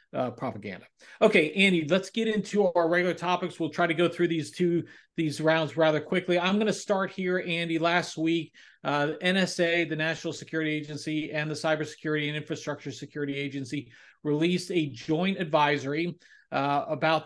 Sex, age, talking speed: male, 40-59, 165 wpm